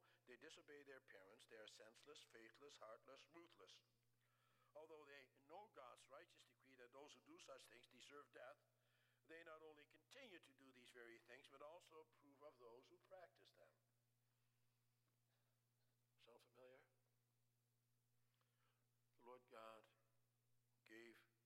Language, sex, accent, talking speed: English, male, American, 130 wpm